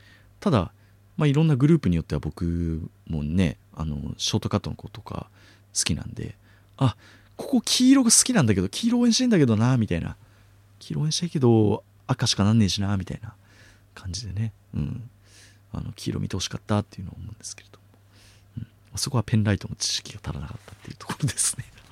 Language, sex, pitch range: Japanese, male, 100-115 Hz